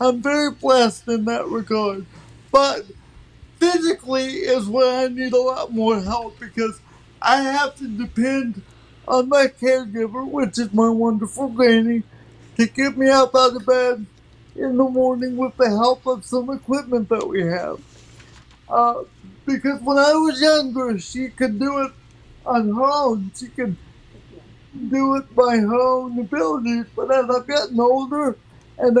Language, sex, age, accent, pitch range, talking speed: English, male, 60-79, American, 230-270 Hz, 155 wpm